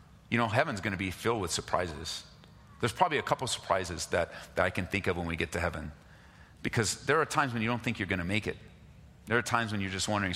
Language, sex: English, male